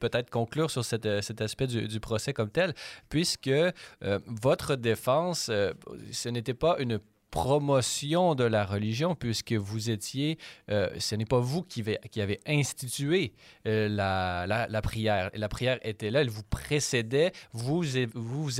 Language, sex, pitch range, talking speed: French, male, 110-135 Hz, 165 wpm